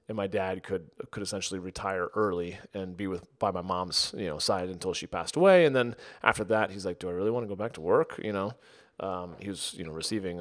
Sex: male